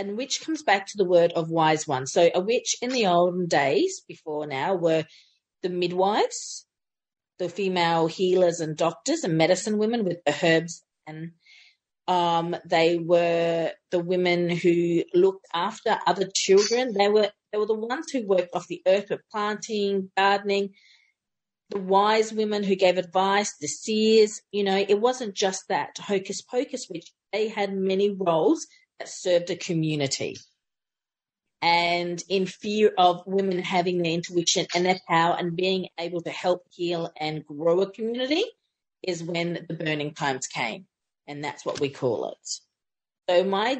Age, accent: 40-59, Australian